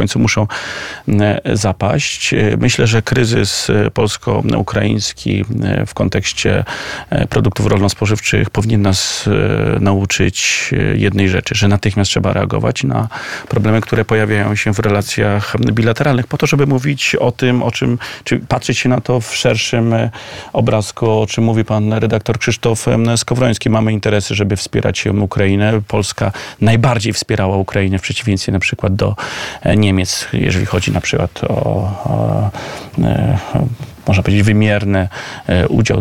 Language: Polish